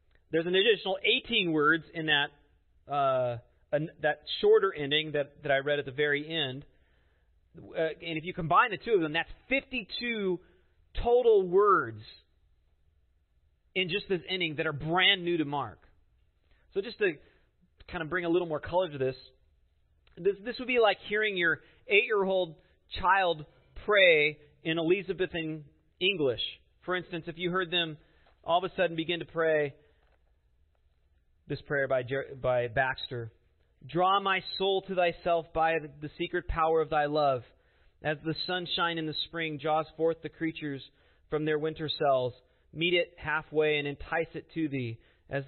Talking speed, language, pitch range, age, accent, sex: 160 wpm, English, 130-180 Hz, 30-49, American, male